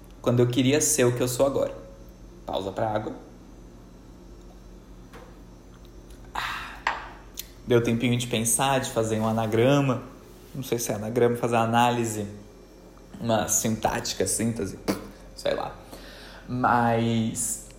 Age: 20-39